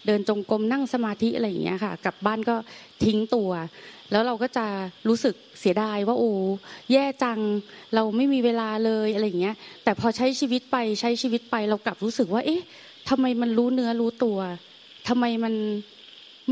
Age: 20-39